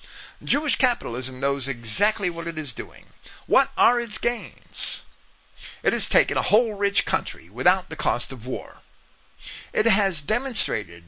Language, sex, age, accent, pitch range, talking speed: English, male, 50-69, American, 150-235 Hz, 145 wpm